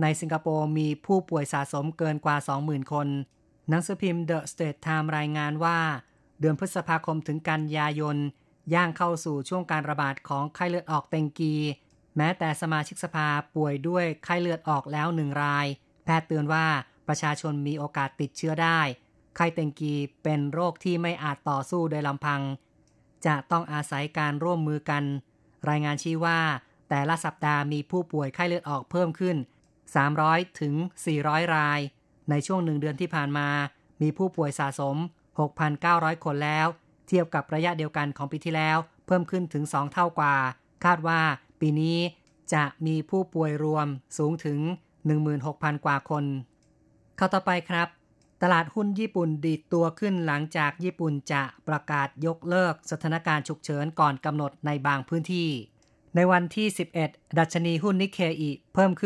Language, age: Thai, 30-49